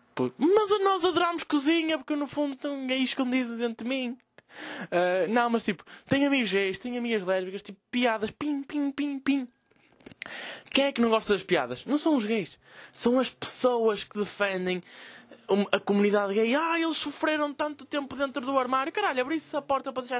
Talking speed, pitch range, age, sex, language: 185 wpm, 160-250 Hz, 20-39, male, Portuguese